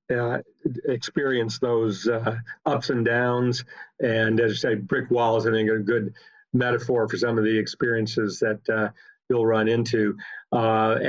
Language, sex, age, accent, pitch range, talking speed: English, male, 50-69, American, 110-120 Hz, 155 wpm